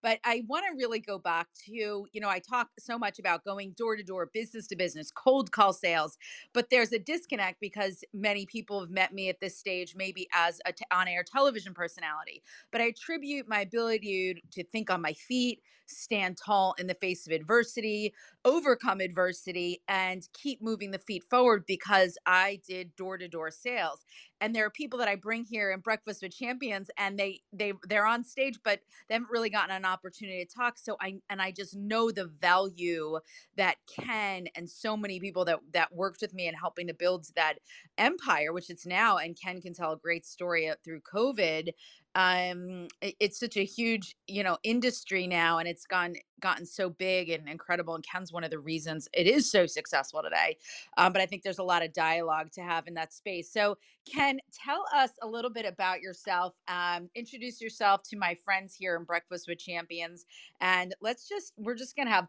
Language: English